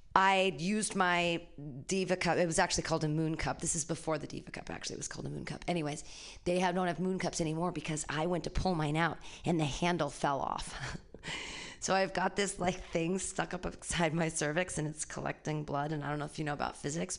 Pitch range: 160-195 Hz